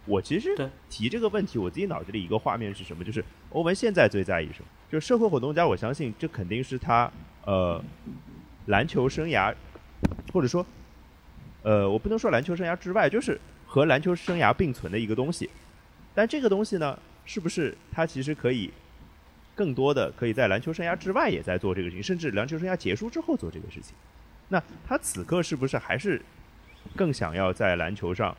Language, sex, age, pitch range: Chinese, male, 30-49, 90-130 Hz